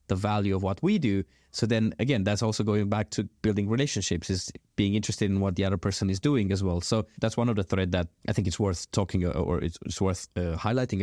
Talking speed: 245 wpm